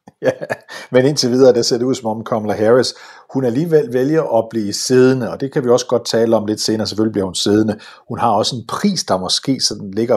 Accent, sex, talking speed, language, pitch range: native, male, 240 wpm, Danish, 100-130 Hz